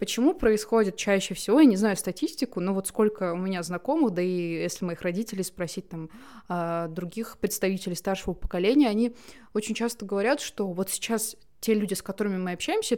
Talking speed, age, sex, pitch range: 175 wpm, 20-39, female, 185-225 Hz